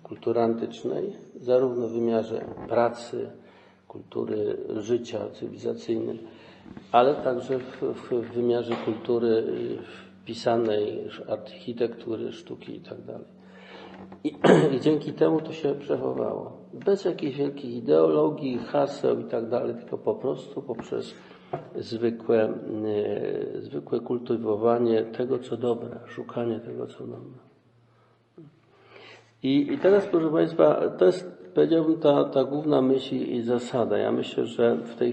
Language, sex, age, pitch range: Polish, male, 50-69, 115-130 Hz